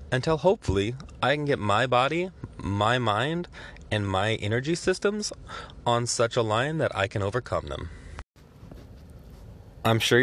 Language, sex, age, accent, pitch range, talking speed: English, male, 20-39, American, 100-135 Hz, 140 wpm